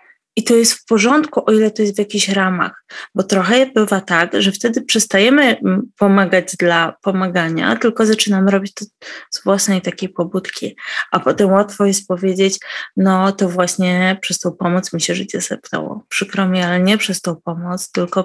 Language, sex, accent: Polish, female, native